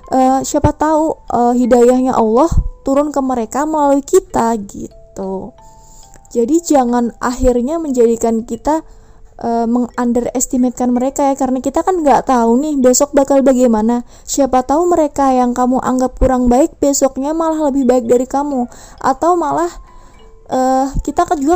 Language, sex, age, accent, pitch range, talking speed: Indonesian, female, 20-39, native, 225-275 Hz, 140 wpm